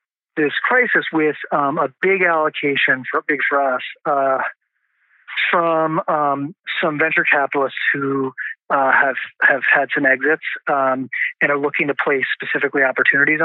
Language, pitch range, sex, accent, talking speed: English, 140-170 Hz, male, American, 145 wpm